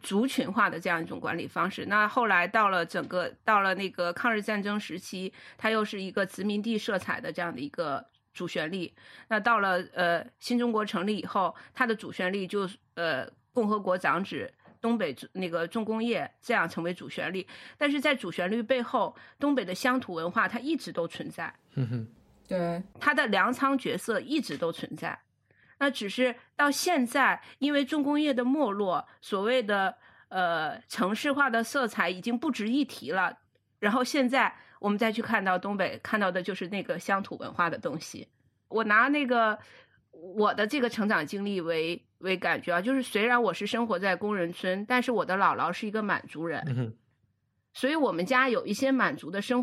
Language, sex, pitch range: Chinese, female, 185-250 Hz